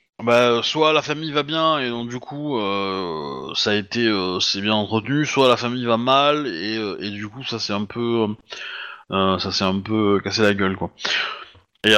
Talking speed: 210 wpm